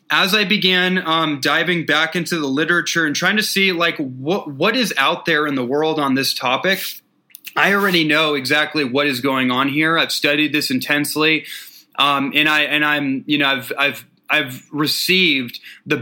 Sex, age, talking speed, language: male, 20-39, 185 wpm, English